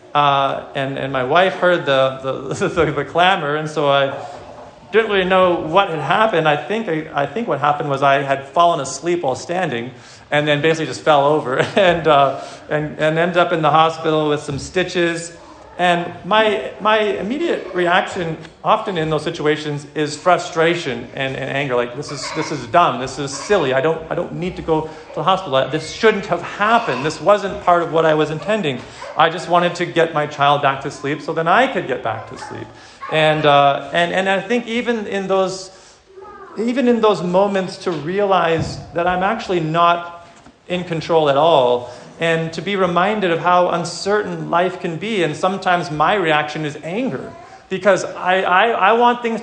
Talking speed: 195 wpm